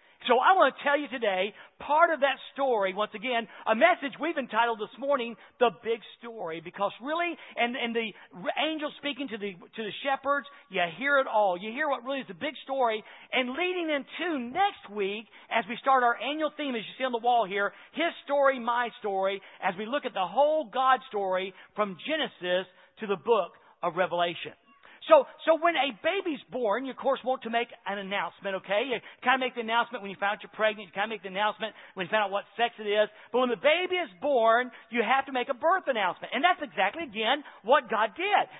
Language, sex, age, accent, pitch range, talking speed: English, male, 50-69, American, 210-290 Hz, 225 wpm